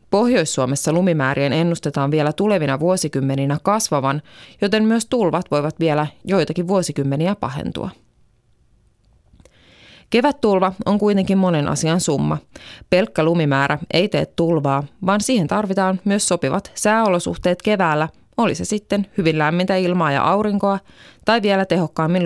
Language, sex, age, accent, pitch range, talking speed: Finnish, female, 20-39, native, 150-195 Hz, 120 wpm